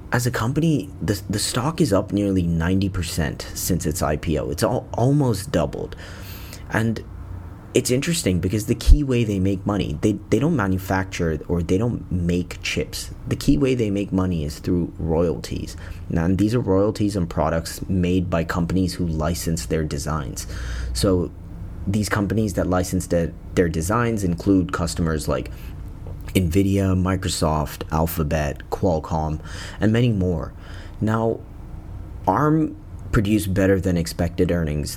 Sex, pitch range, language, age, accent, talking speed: male, 85-100 Hz, English, 30-49, American, 140 wpm